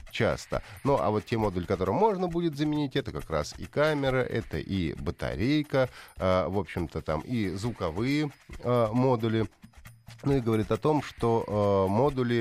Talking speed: 165 wpm